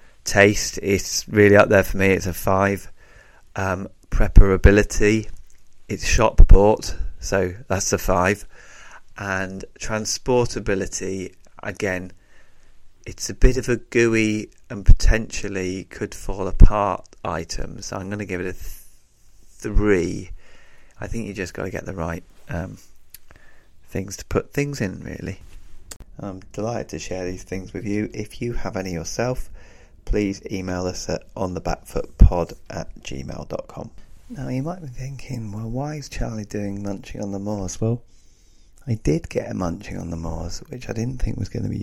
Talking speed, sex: 155 wpm, male